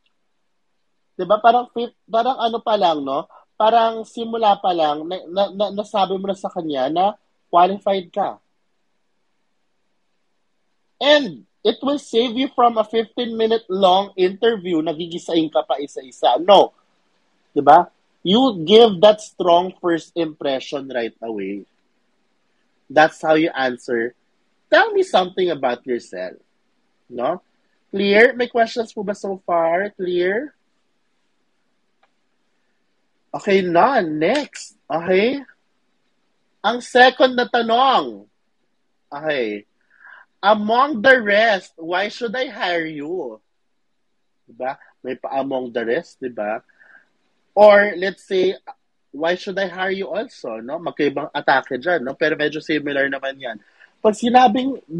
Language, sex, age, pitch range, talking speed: Filipino, male, 30-49, 160-230 Hz, 120 wpm